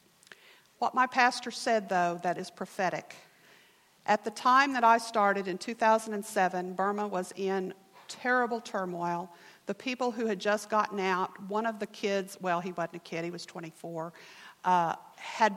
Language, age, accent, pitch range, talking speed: English, 50-69, American, 190-235 Hz, 160 wpm